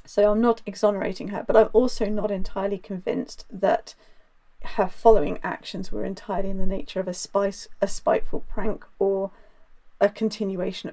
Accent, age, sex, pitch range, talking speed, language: British, 40-59, female, 190-220 Hz, 160 wpm, English